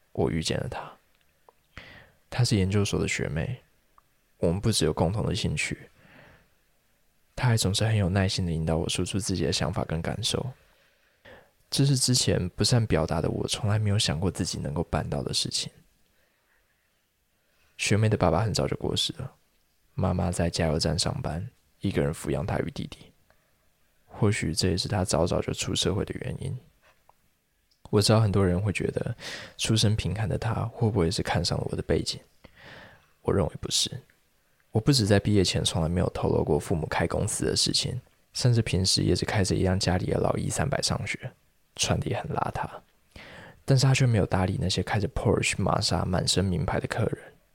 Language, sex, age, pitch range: Chinese, male, 20-39, 85-110 Hz